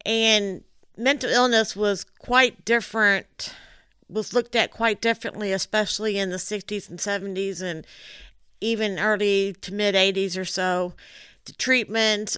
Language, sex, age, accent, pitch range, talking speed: English, female, 50-69, American, 185-215 Hz, 125 wpm